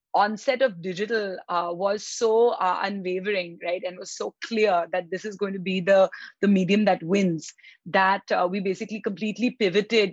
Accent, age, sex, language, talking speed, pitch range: Indian, 30-49, female, English, 180 wpm, 185-215 Hz